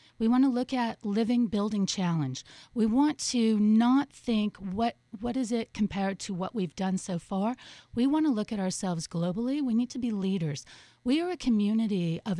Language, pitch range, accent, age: English, 195-245 Hz, American, 40-59